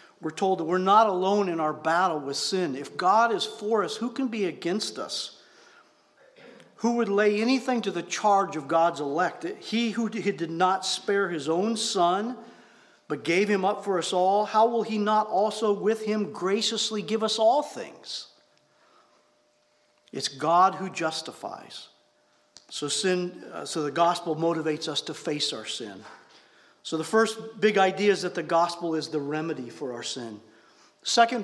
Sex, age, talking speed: male, 50-69, 170 wpm